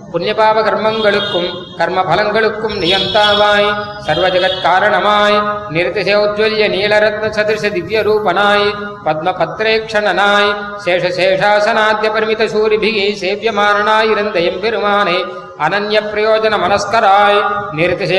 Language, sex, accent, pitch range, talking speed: Tamil, male, native, 190-215 Hz, 50 wpm